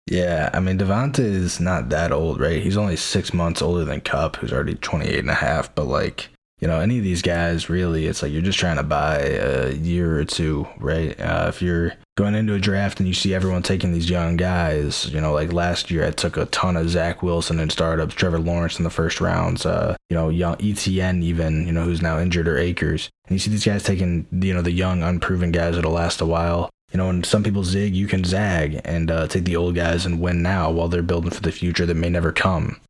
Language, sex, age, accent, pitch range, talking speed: English, male, 20-39, American, 85-95 Hz, 250 wpm